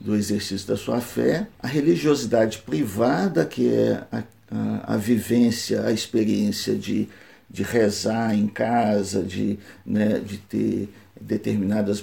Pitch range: 105-140 Hz